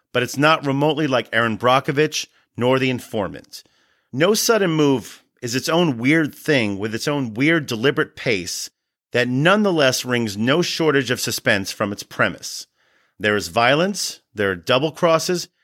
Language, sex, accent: English, male, American